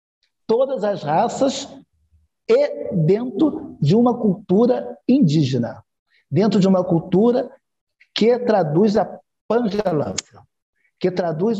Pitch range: 160-215 Hz